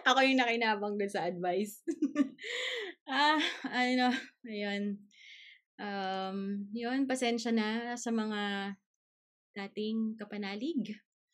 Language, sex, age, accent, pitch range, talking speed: Filipino, female, 20-39, native, 195-245 Hz, 90 wpm